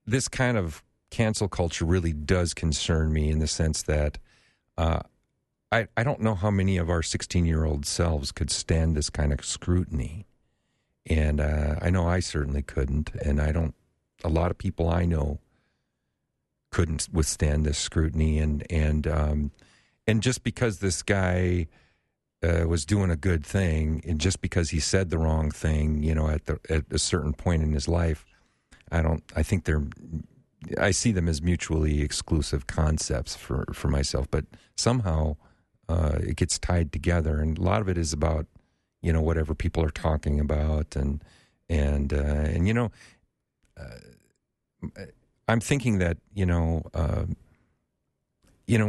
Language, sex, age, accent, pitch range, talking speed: English, male, 50-69, American, 75-90 Hz, 165 wpm